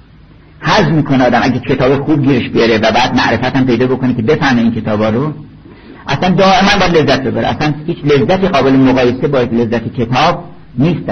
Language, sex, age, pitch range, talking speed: Persian, male, 60-79, 110-135 Hz, 185 wpm